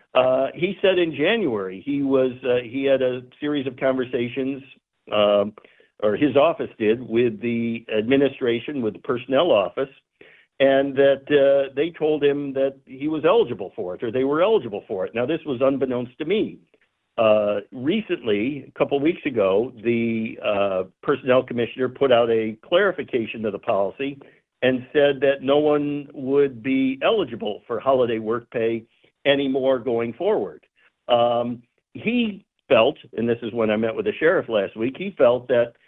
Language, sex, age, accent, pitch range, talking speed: English, male, 60-79, American, 120-145 Hz, 165 wpm